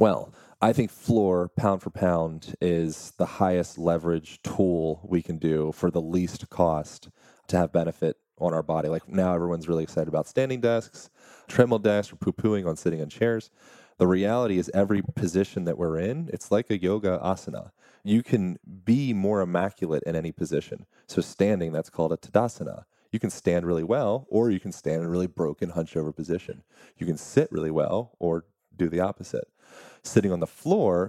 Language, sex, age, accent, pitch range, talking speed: English, male, 30-49, American, 85-105 Hz, 185 wpm